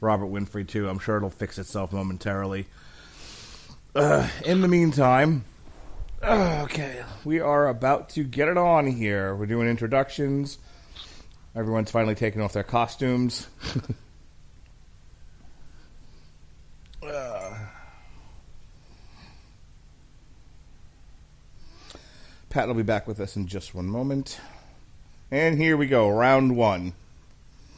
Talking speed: 105 wpm